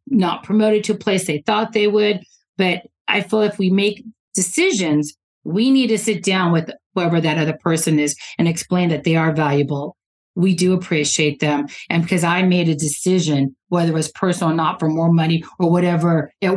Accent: American